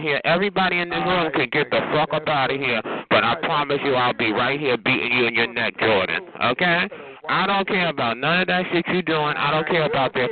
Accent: American